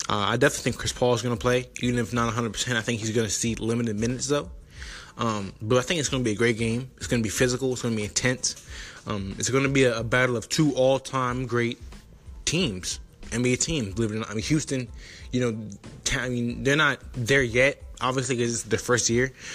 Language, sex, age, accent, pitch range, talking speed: English, male, 20-39, American, 110-125 Hz, 250 wpm